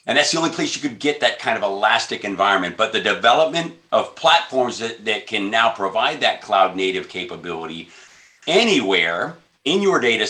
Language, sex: English, male